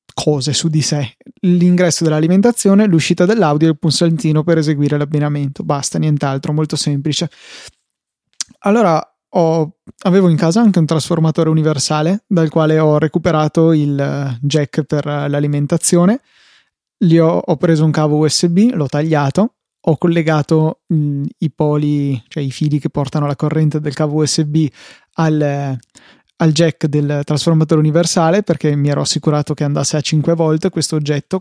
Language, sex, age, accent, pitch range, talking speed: Italian, male, 20-39, native, 150-170 Hz, 145 wpm